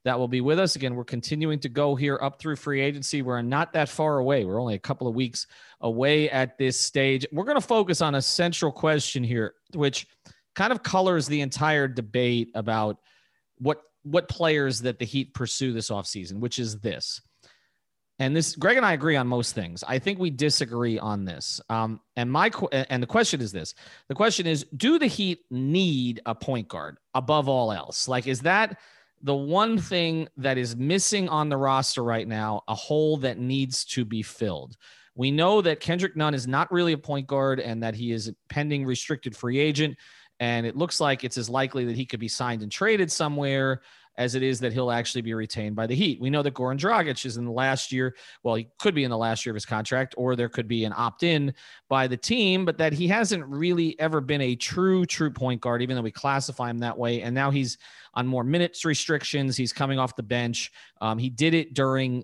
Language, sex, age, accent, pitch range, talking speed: English, male, 30-49, American, 120-155 Hz, 220 wpm